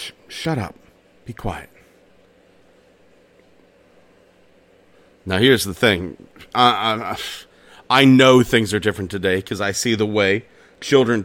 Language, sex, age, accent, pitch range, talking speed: English, male, 40-59, American, 105-135 Hz, 115 wpm